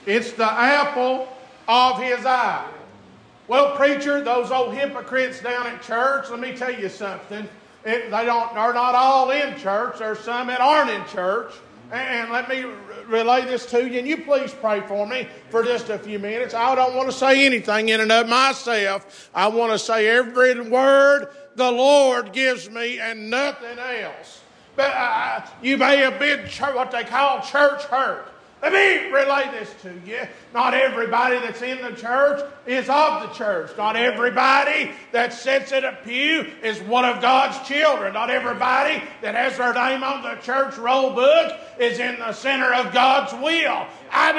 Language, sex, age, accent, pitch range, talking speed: English, male, 50-69, American, 240-285 Hz, 185 wpm